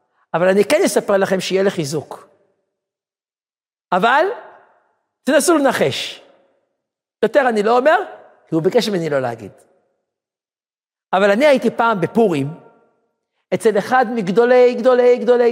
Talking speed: 115 wpm